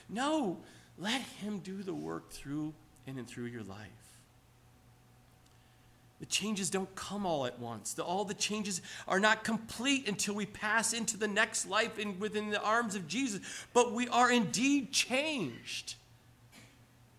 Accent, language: American, English